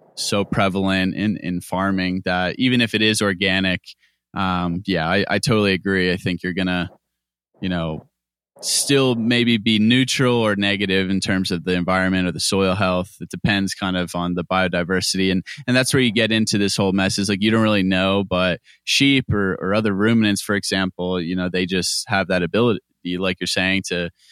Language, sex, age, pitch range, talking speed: English, male, 20-39, 90-110 Hz, 195 wpm